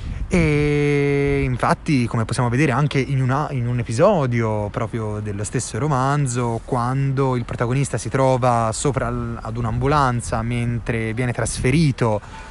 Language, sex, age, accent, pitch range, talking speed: Italian, male, 20-39, native, 120-150 Hz, 120 wpm